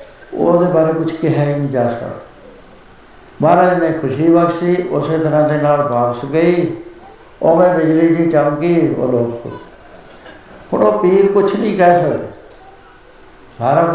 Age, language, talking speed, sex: 60-79, Punjabi, 115 wpm, male